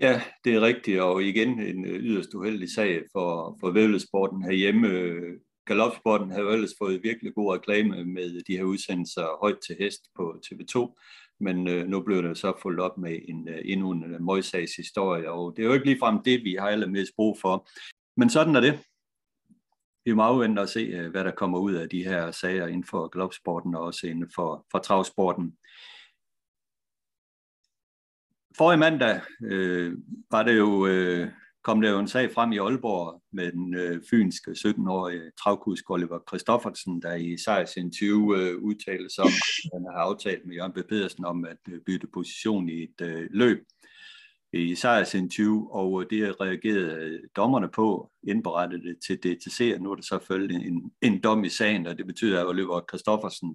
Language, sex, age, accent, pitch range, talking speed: Danish, male, 60-79, native, 85-105 Hz, 175 wpm